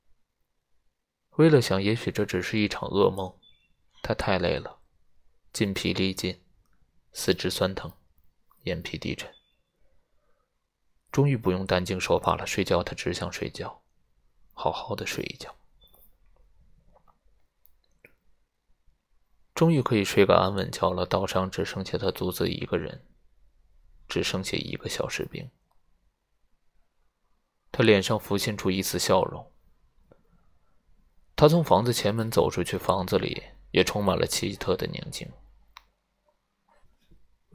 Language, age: Chinese, 20-39